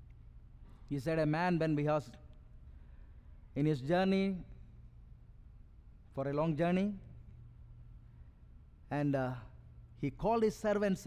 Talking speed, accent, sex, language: 105 wpm, Indian, male, English